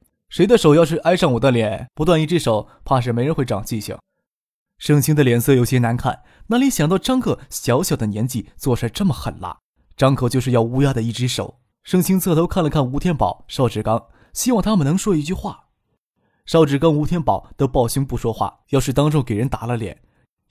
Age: 20-39